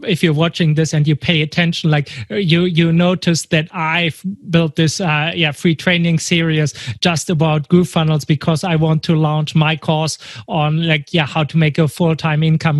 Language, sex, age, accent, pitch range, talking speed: English, male, 30-49, German, 155-170 Hz, 190 wpm